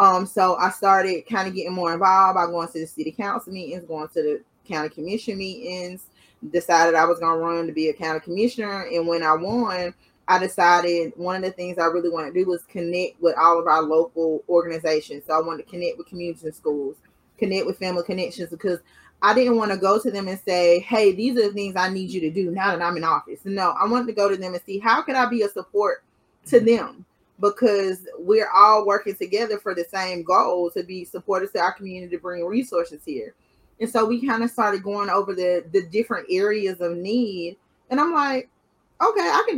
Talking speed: 225 wpm